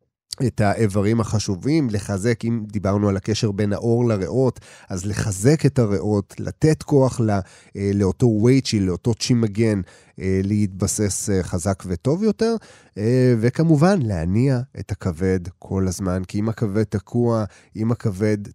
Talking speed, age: 125 wpm, 30-49